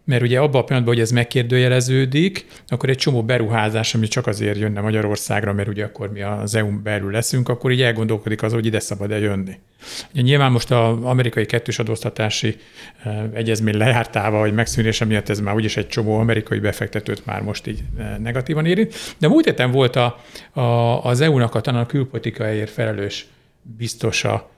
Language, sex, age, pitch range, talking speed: Hungarian, male, 50-69, 110-135 Hz, 170 wpm